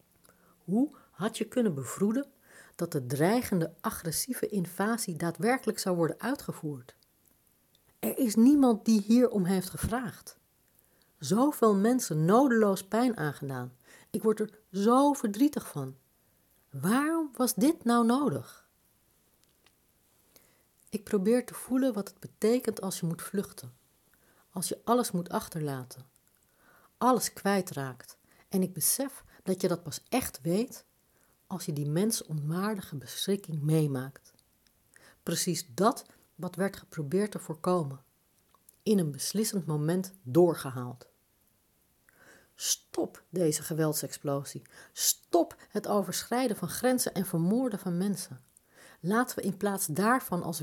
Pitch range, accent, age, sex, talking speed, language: 155-225 Hz, Dutch, 60-79, female, 120 wpm, Dutch